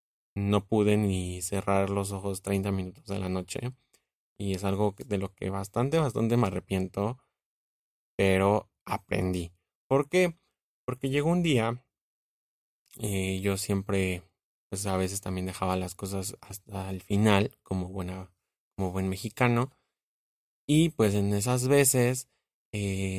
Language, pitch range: Spanish, 95-115 Hz